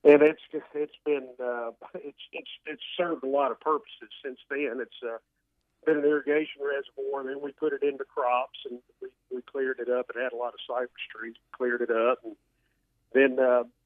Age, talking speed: 50-69, 205 wpm